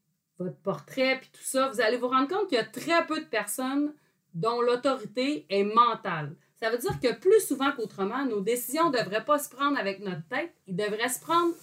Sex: female